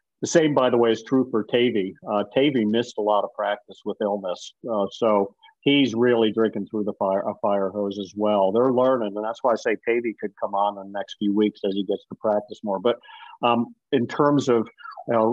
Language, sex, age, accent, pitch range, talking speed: English, male, 50-69, American, 100-125 Hz, 230 wpm